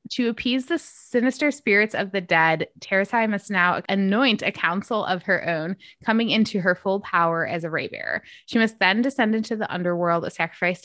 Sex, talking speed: female, 190 wpm